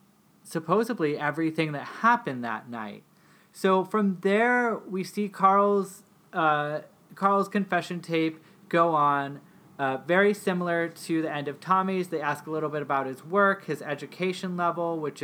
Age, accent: 30-49, American